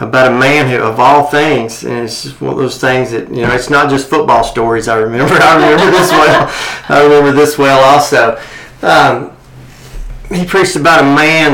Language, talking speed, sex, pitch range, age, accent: English, 200 wpm, male, 120-145 Hz, 40-59, American